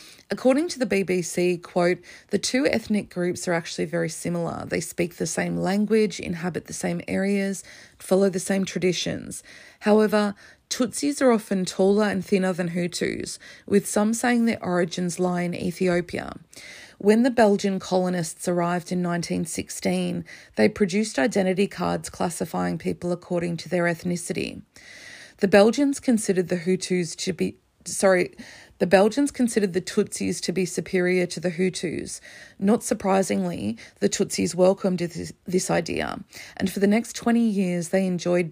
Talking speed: 150 wpm